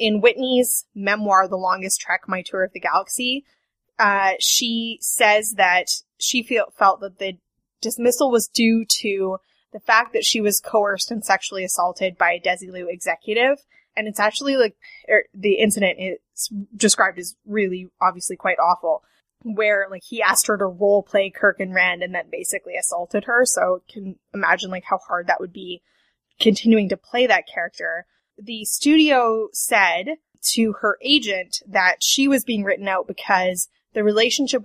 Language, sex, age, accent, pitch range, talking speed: English, female, 10-29, American, 185-225 Hz, 165 wpm